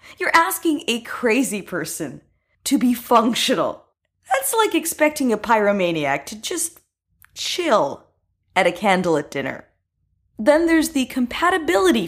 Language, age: English, 20-39